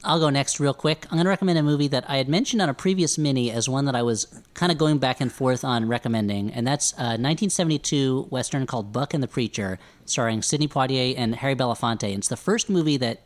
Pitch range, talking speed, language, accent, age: 115-145 Hz, 245 wpm, English, American, 40-59